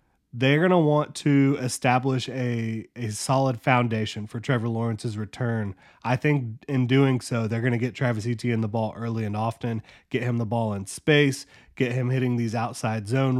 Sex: male